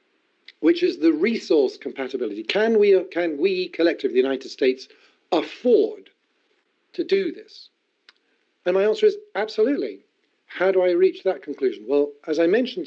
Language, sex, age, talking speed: English, male, 50-69, 150 wpm